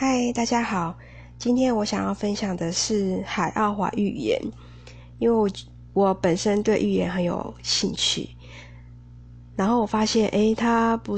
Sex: female